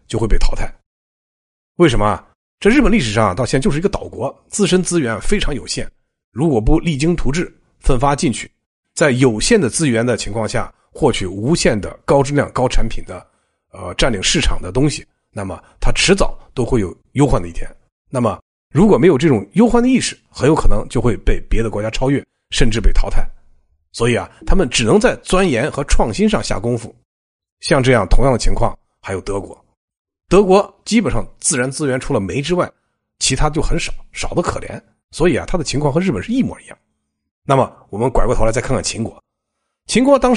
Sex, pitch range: male, 115-175 Hz